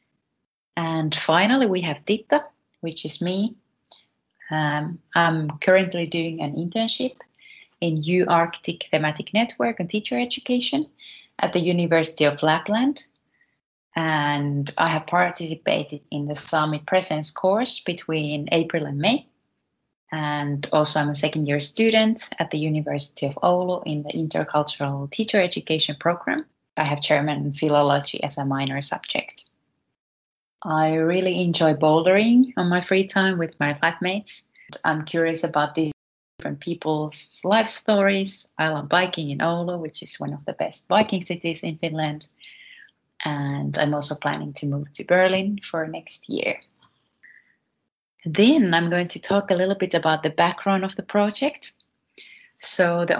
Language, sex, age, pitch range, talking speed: English, female, 20-39, 150-190 Hz, 140 wpm